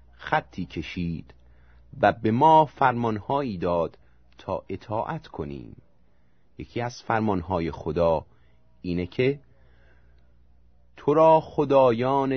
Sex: male